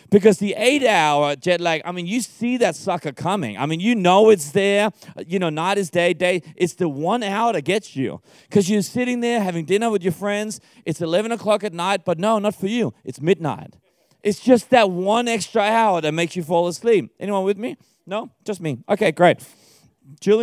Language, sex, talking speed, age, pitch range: English, male, 210 wpm, 30-49, 150-205 Hz